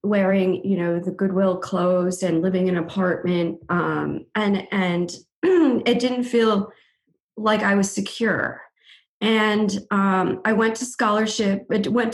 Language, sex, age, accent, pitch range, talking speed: English, female, 40-59, American, 185-230 Hz, 140 wpm